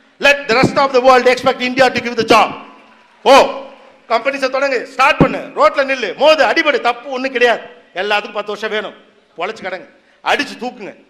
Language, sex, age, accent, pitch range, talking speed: Tamil, male, 50-69, native, 190-255 Hz, 175 wpm